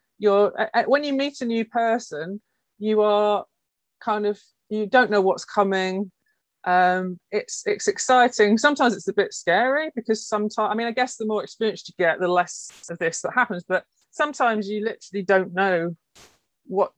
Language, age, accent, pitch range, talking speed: English, 30-49, British, 180-220 Hz, 175 wpm